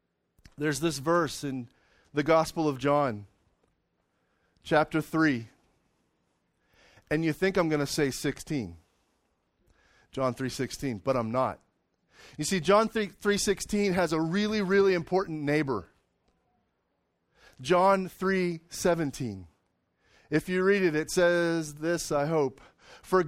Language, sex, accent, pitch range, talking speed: English, male, American, 140-195 Hz, 115 wpm